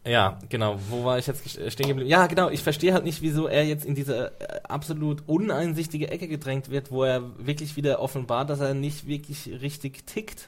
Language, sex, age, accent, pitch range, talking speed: German, male, 10-29, German, 115-145 Hz, 210 wpm